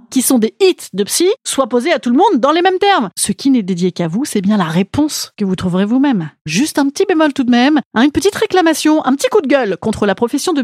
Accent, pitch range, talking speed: French, 230-335 Hz, 280 wpm